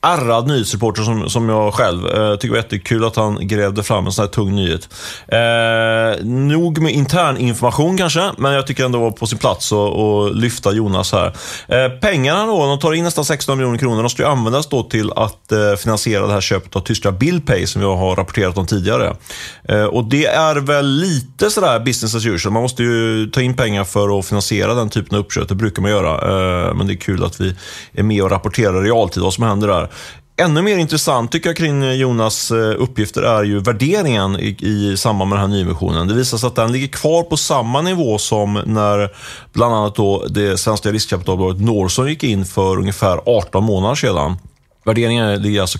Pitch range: 100-125 Hz